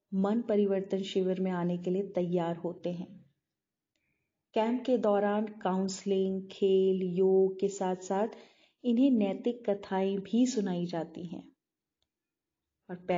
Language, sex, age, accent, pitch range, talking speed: Hindi, female, 30-49, native, 175-210 Hz, 125 wpm